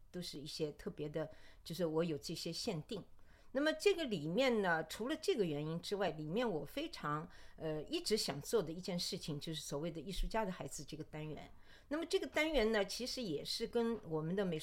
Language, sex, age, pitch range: Chinese, female, 50-69, 170-245 Hz